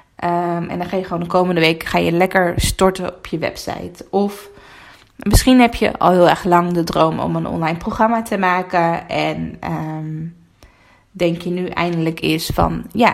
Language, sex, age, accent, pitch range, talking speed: Dutch, female, 20-39, Dutch, 170-195 Hz, 180 wpm